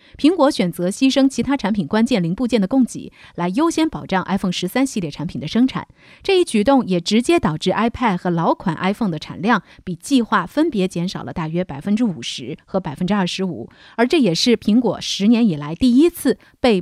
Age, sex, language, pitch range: 30-49, female, Chinese, 180-250 Hz